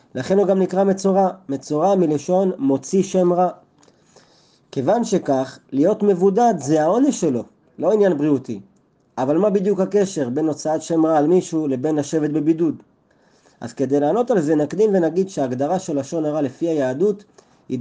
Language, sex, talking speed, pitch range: Hebrew, male, 160 wpm, 145-200 Hz